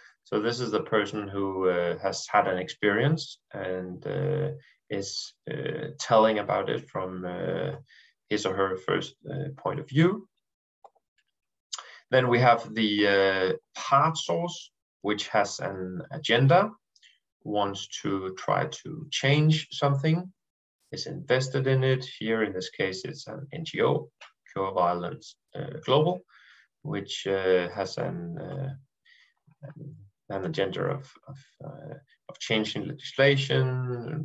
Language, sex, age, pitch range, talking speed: Danish, male, 30-49, 100-145 Hz, 130 wpm